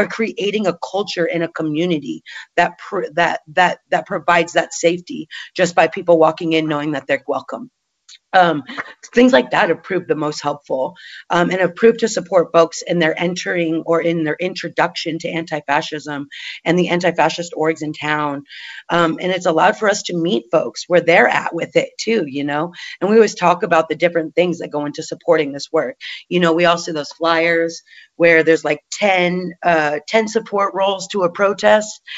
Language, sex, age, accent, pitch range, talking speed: English, female, 30-49, American, 160-195 Hz, 195 wpm